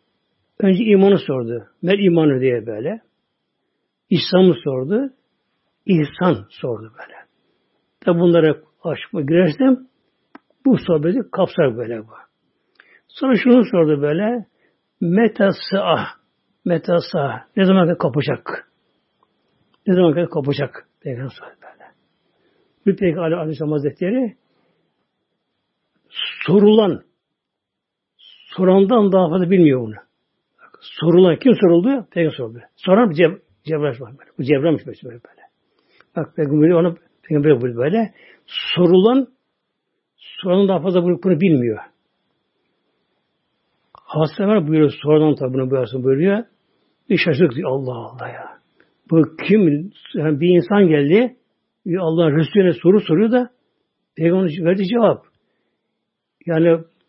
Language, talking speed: Turkish, 105 wpm